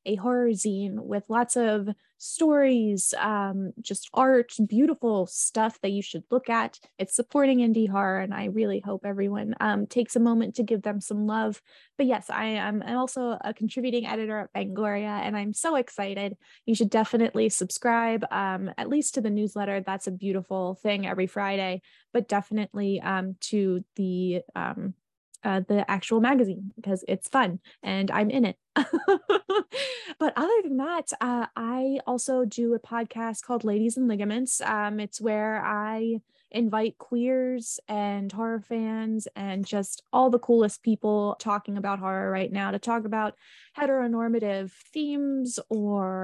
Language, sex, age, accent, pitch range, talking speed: English, female, 10-29, American, 200-240 Hz, 160 wpm